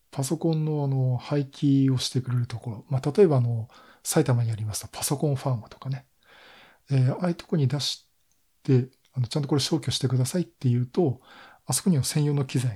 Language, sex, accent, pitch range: Japanese, male, native, 120-145 Hz